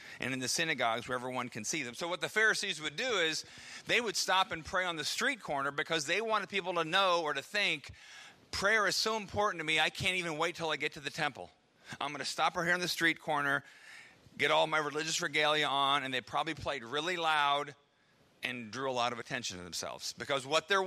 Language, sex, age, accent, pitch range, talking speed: English, male, 40-59, American, 120-170 Hz, 240 wpm